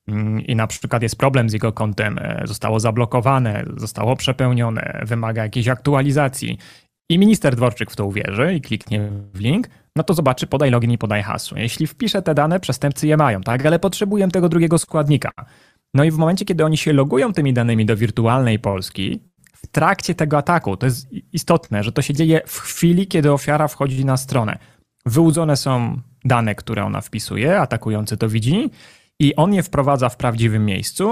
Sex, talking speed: male, 180 wpm